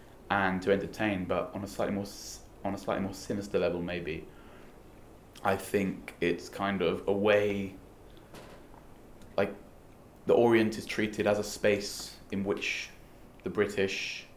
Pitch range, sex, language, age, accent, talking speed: 95-105 Hz, male, English, 20-39, British, 140 wpm